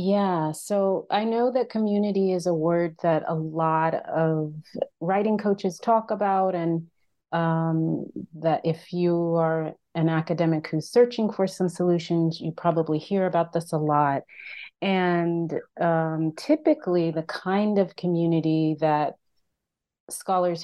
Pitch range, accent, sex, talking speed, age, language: 160-190 Hz, American, female, 135 wpm, 30-49, English